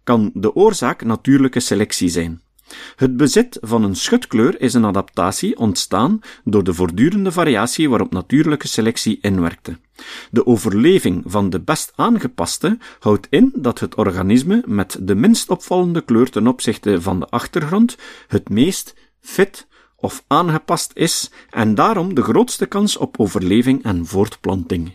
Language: Dutch